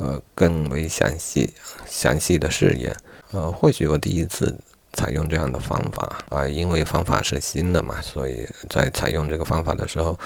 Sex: male